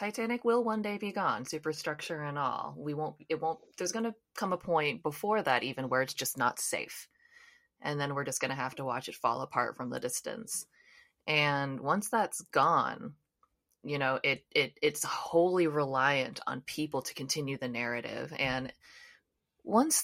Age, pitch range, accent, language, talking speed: 20-39, 140-195 Hz, American, English, 175 wpm